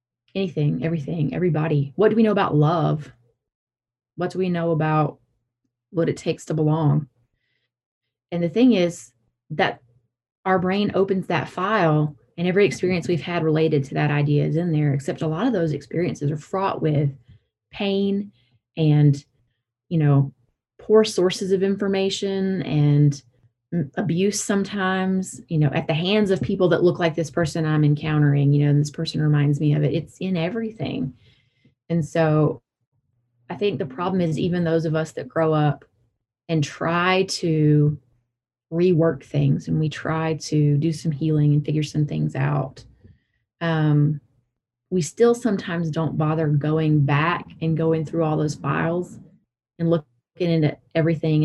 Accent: American